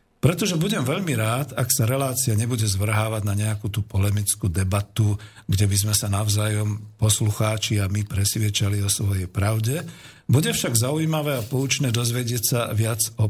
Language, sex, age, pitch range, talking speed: Slovak, male, 50-69, 105-125 Hz, 160 wpm